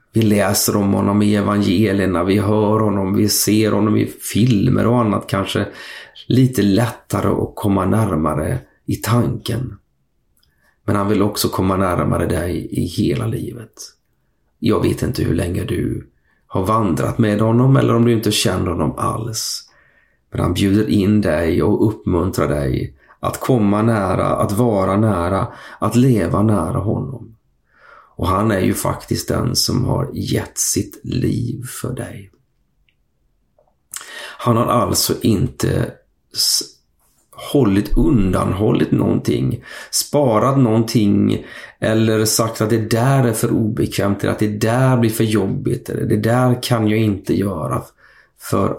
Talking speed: 140 wpm